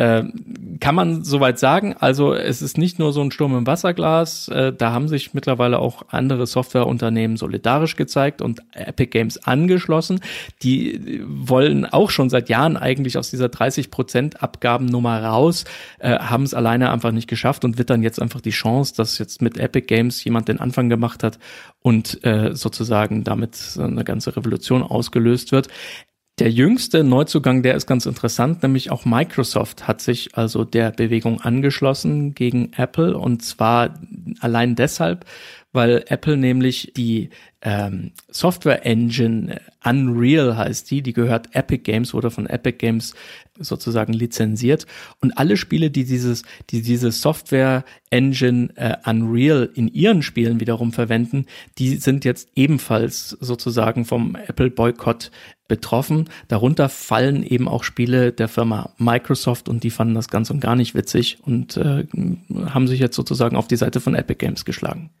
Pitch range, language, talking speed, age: 115-140 Hz, English, 150 wpm, 40-59